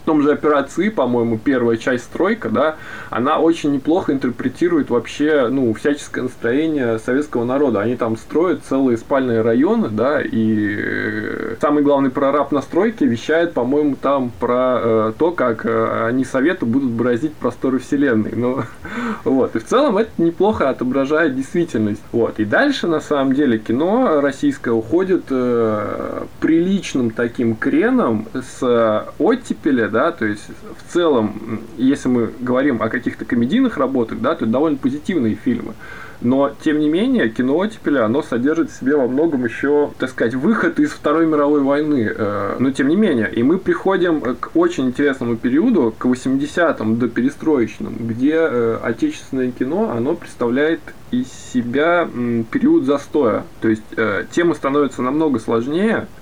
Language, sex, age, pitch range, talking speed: Russian, male, 20-39, 115-155 Hz, 145 wpm